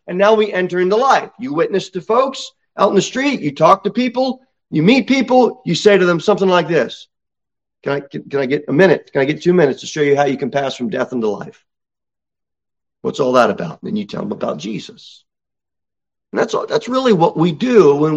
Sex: male